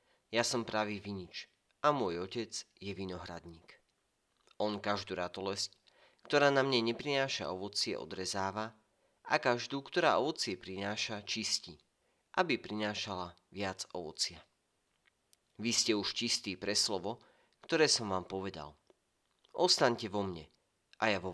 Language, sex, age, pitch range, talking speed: Slovak, male, 30-49, 95-120 Hz, 125 wpm